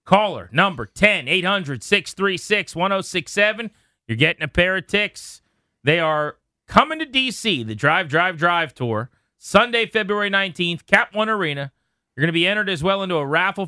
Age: 30-49